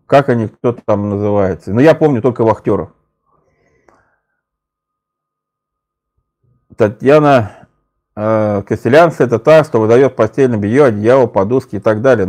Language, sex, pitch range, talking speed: Russian, male, 110-150 Hz, 115 wpm